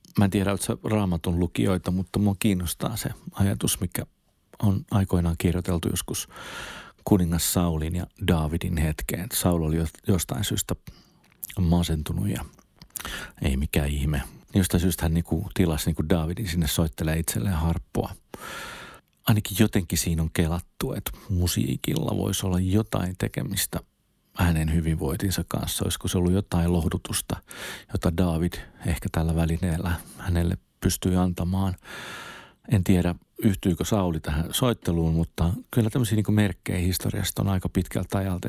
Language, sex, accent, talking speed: Finnish, male, native, 125 wpm